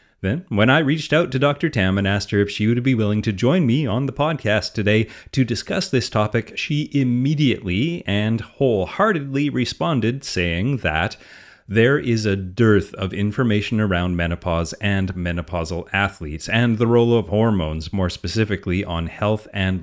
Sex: male